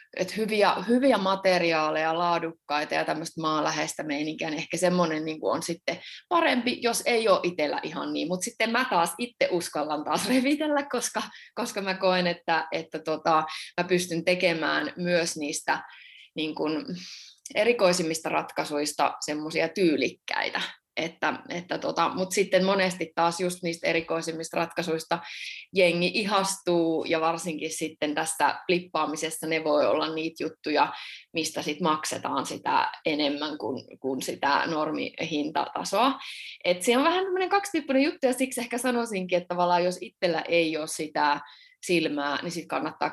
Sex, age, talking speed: female, 20-39, 130 wpm